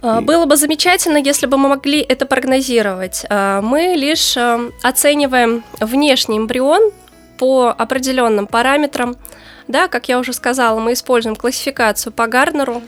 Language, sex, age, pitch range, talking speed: Russian, female, 20-39, 220-275 Hz, 120 wpm